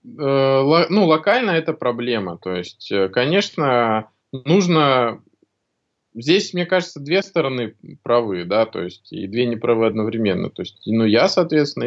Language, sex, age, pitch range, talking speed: Russian, male, 20-39, 105-155 Hz, 130 wpm